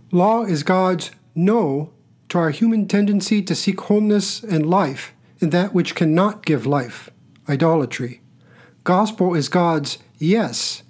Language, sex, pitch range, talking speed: English, male, 150-200 Hz, 130 wpm